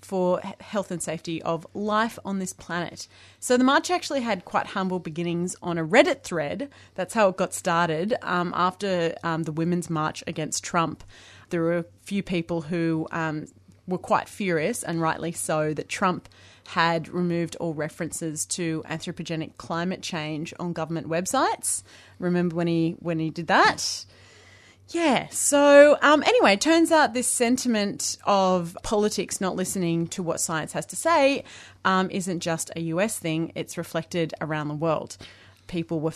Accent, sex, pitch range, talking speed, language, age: Australian, female, 155-185 Hz, 165 wpm, English, 30-49